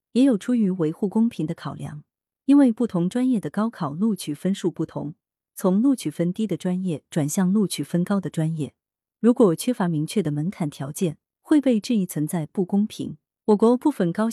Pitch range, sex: 160-225 Hz, female